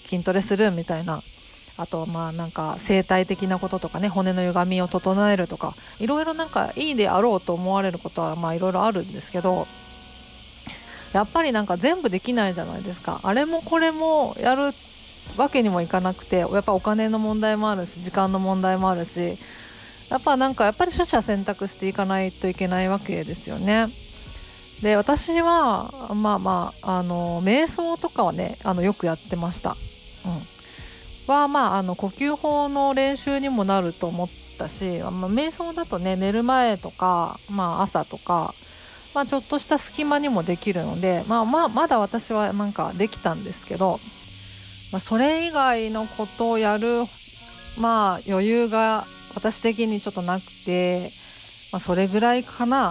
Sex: female